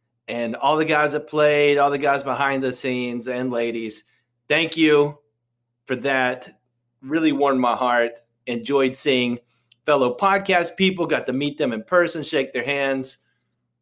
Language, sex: English, male